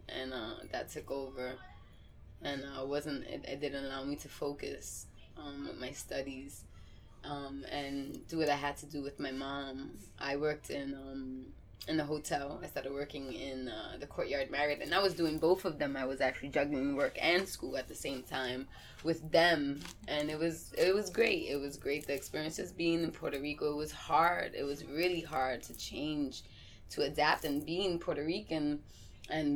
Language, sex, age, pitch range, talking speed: English, female, 20-39, 140-165 Hz, 195 wpm